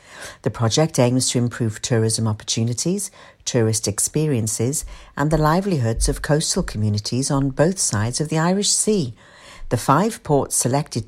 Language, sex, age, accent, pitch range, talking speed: English, female, 60-79, British, 115-170 Hz, 140 wpm